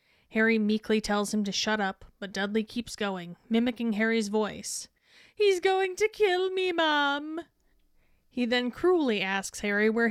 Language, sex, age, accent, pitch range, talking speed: English, female, 20-39, American, 205-245 Hz, 155 wpm